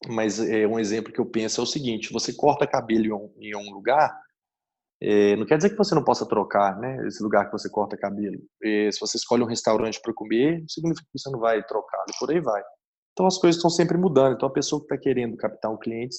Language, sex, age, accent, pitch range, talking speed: Portuguese, male, 20-39, Brazilian, 105-145 Hz, 235 wpm